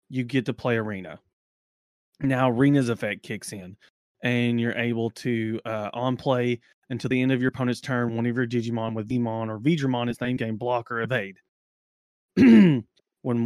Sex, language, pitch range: male, English, 120-145 Hz